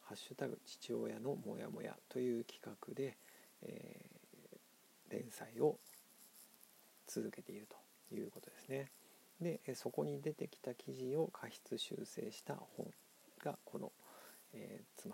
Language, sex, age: Japanese, male, 50-69